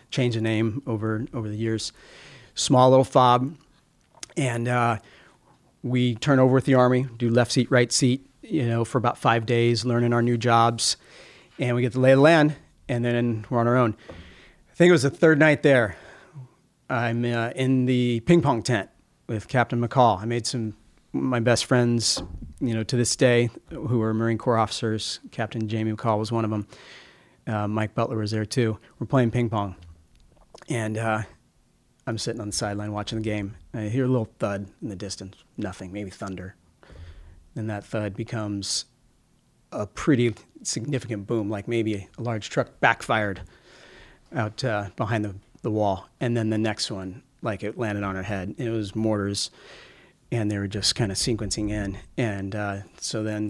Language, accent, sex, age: English, American, male, 40-59